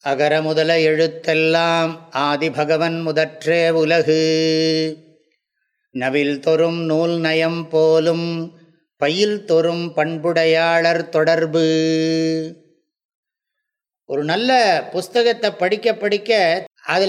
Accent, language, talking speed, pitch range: Indian, English, 75 wpm, 165-225 Hz